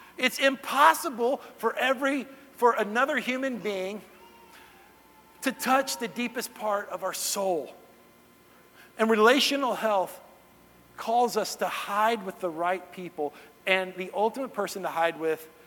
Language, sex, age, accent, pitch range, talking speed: English, male, 50-69, American, 145-185 Hz, 130 wpm